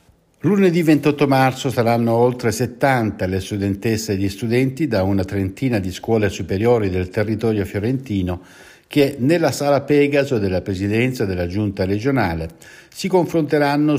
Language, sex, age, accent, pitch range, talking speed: Italian, male, 60-79, native, 95-125 Hz, 135 wpm